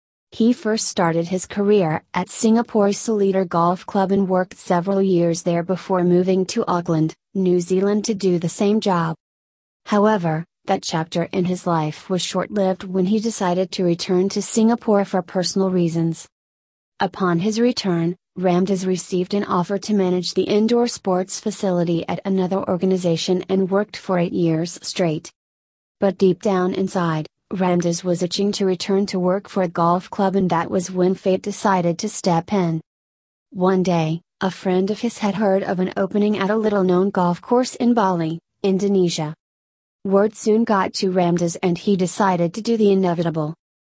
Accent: American